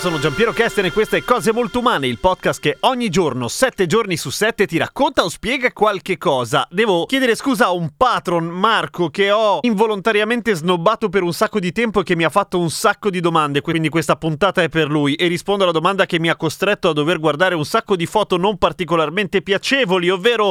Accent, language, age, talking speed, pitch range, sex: native, Italian, 30-49, 215 wpm, 155-215 Hz, male